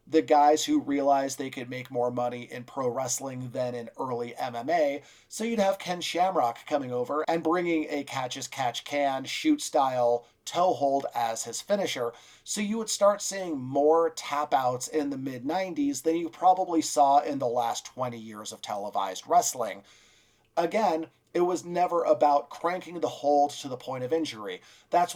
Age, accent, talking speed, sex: 40-59, American, 160 wpm, male